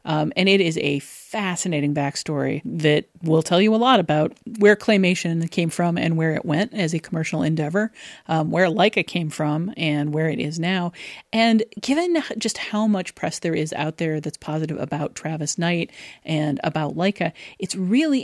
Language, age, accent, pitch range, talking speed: English, 40-59, American, 155-200 Hz, 185 wpm